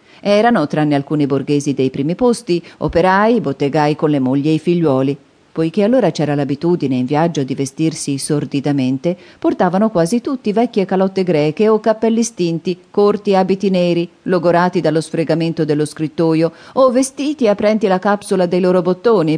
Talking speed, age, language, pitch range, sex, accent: 150 wpm, 40-59, Italian, 150-200 Hz, female, native